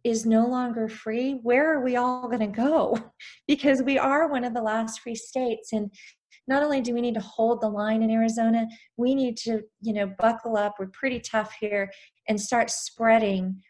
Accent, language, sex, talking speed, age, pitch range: American, English, female, 195 wpm, 30-49, 210-235 Hz